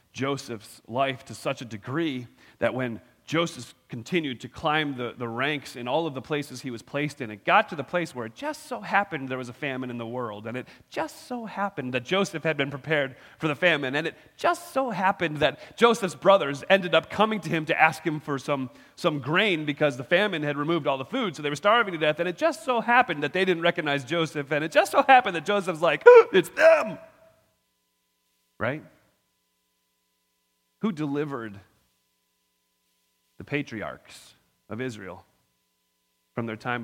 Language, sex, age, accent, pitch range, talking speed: English, male, 30-49, American, 125-200 Hz, 195 wpm